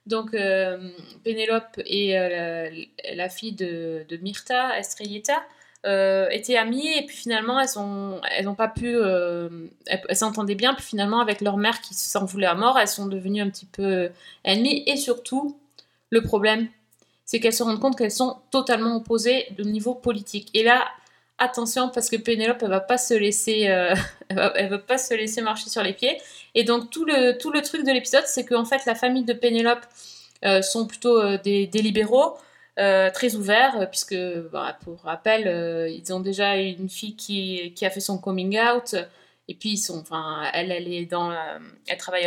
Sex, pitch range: female, 185-235 Hz